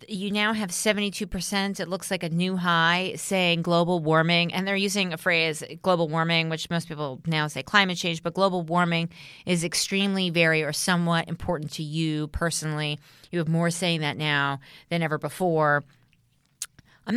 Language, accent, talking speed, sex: English, American, 170 wpm, female